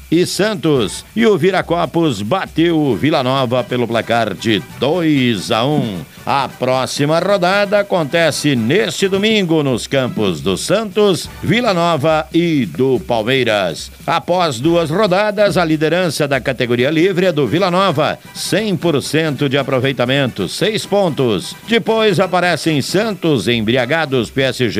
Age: 60-79